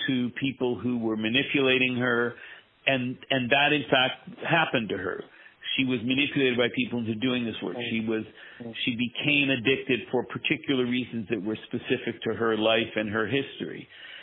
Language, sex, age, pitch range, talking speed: English, male, 50-69, 120-140 Hz, 170 wpm